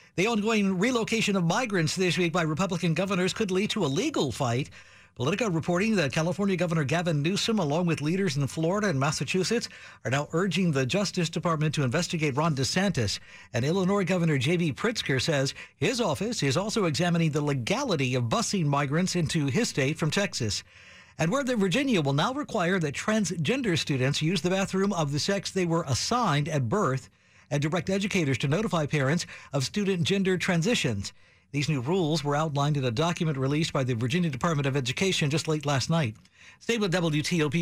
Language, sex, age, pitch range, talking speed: English, male, 60-79, 140-195 Hz, 180 wpm